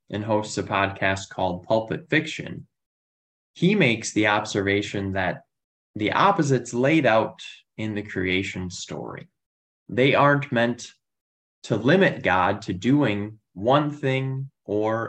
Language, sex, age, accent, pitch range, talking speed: English, male, 20-39, American, 95-125 Hz, 125 wpm